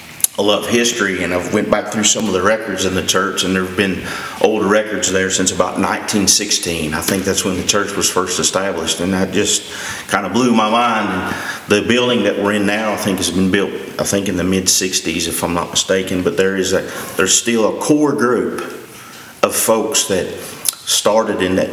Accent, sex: American, male